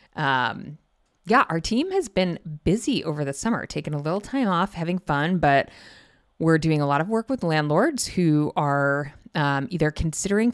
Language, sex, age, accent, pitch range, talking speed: English, female, 20-39, American, 140-175 Hz, 175 wpm